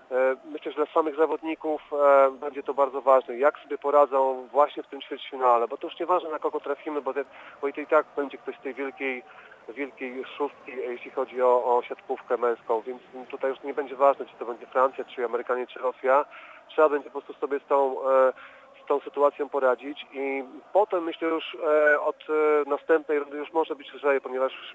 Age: 40-59